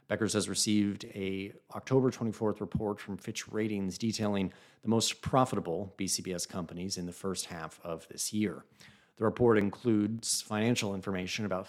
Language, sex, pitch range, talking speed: English, male, 90-110 Hz, 150 wpm